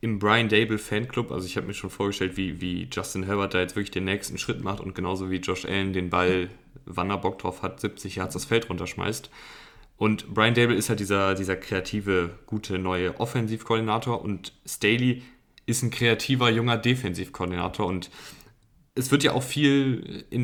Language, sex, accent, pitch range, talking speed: German, male, German, 95-115 Hz, 175 wpm